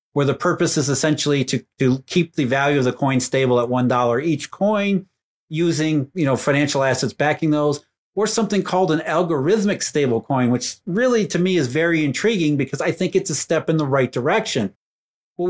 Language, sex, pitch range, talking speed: English, male, 145-190 Hz, 185 wpm